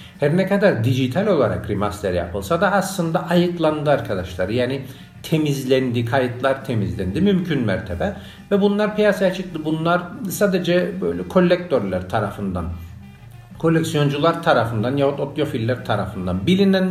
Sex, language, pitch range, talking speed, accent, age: male, Turkish, 110-175 Hz, 115 wpm, native, 50-69